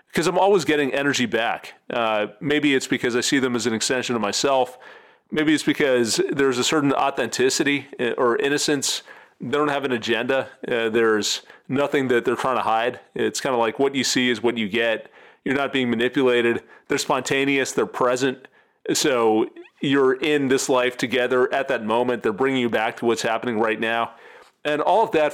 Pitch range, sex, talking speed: 120-145 Hz, male, 190 wpm